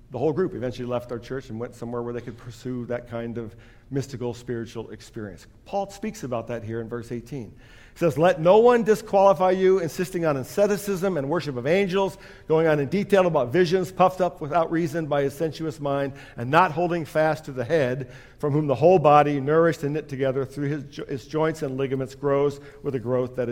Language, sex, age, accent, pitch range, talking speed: English, male, 50-69, American, 140-195 Hz, 210 wpm